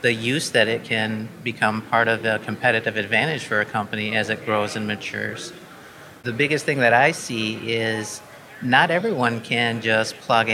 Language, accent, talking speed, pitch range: English, American, 175 wpm, 110-125 Hz